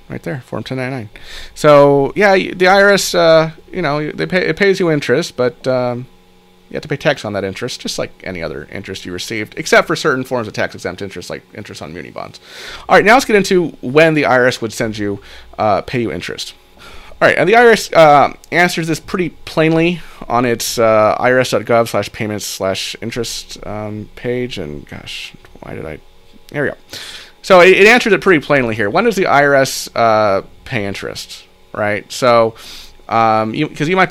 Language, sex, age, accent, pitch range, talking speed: English, male, 30-49, American, 110-155 Hz, 195 wpm